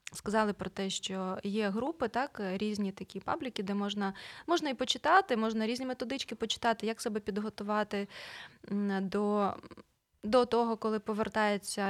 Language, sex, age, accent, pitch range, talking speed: Ukrainian, female, 20-39, native, 200-245 Hz, 135 wpm